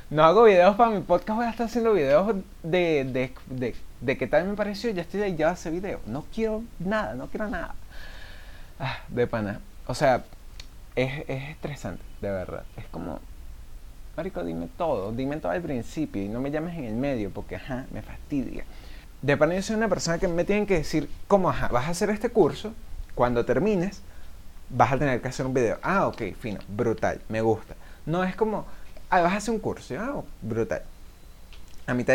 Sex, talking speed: male, 200 wpm